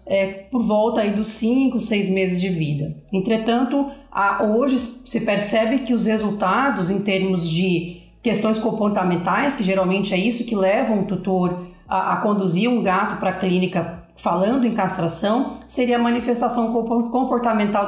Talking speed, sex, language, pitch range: 155 wpm, female, Portuguese, 185-230 Hz